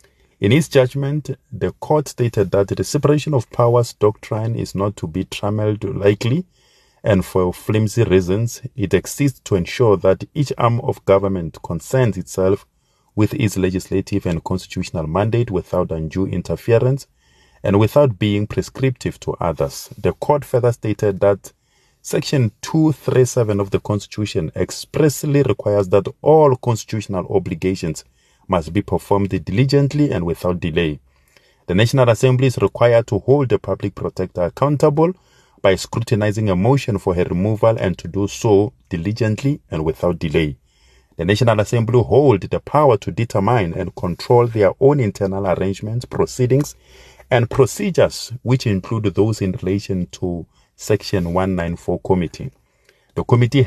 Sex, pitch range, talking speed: male, 95-125 Hz, 140 wpm